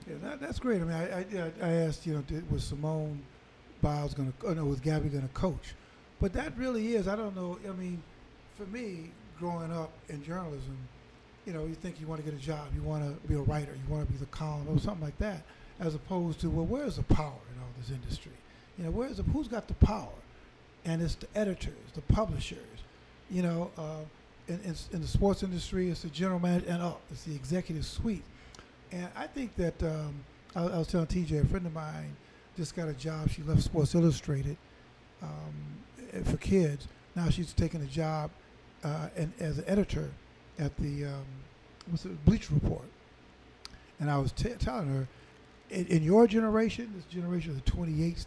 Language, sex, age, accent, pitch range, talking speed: English, male, 50-69, American, 145-180 Hz, 205 wpm